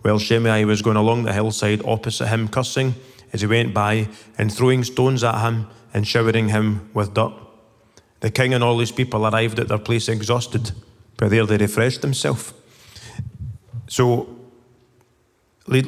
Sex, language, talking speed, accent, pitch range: male, English, 160 wpm, British, 110-125 Hz